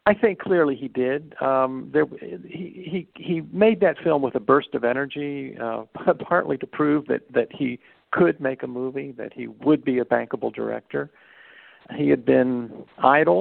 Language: English